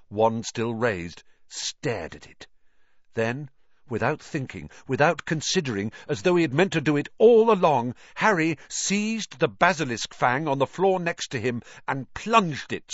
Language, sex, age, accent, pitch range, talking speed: English, male, 50-69, British, 110-160 Hz, 160 wpm